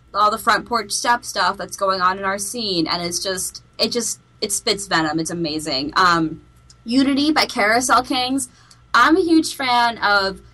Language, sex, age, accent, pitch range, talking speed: English, female, 10-29, American, 190-250 Hz, 180 wpm